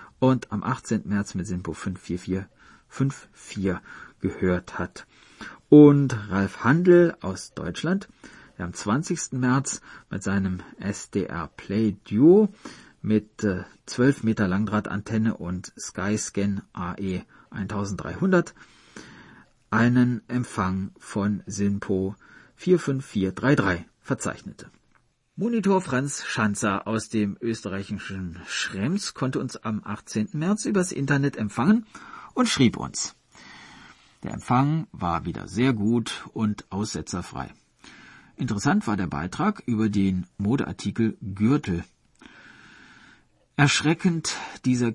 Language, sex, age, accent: German, male, 40-59, German